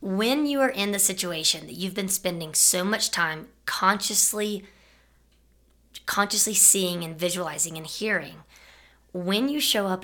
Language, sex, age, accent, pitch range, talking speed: English, female, 20-39, American, 165-190 Hz, 145 wpm